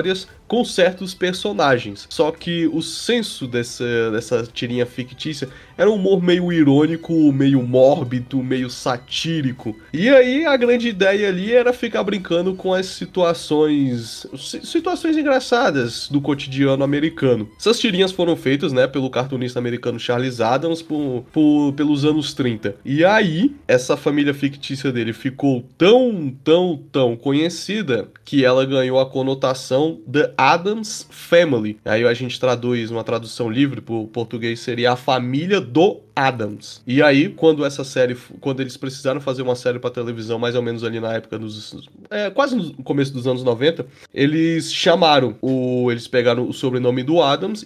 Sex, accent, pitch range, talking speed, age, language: male, Brazilian, 125-165 Hz, 155 wpm, 20-39, Portuguese